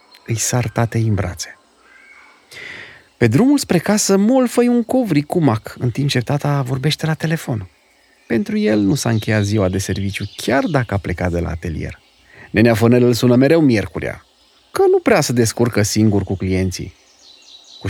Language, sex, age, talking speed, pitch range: Romanian, male, 30-49, 170 wpm, 100-165 Hz